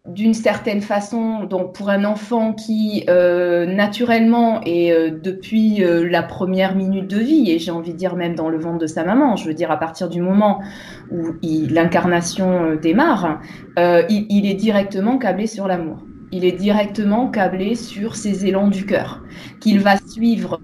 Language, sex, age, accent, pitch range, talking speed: French, female, 20-39, French, 180-230 Hz, 185 wpm